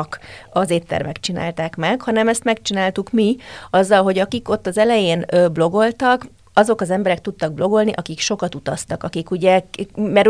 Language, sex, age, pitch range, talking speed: Hungarian, female, 30-49, 175-210 Hz, 150 wpm